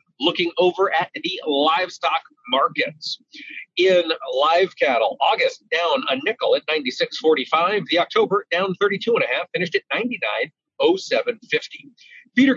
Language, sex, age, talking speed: English, male, 40-59, 125 wpm